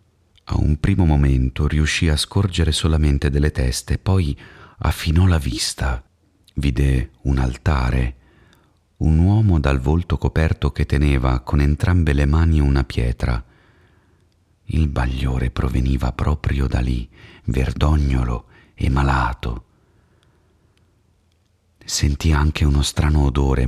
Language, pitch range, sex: Italian, 65-90 Hz, male